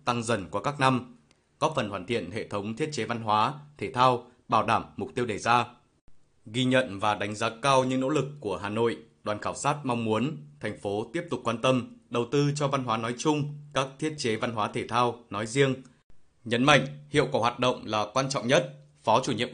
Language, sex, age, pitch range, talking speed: Vietnamese, male, 20-39, 110-135 Hz, 230 wpm